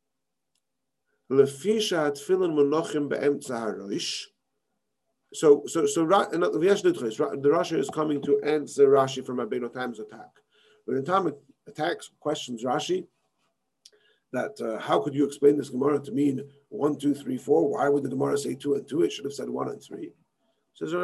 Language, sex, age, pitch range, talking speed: English, male, 40-59, 140-235 Hz, 145 wpm